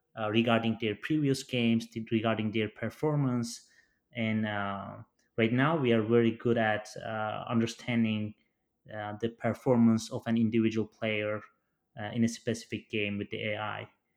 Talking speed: 145 wpm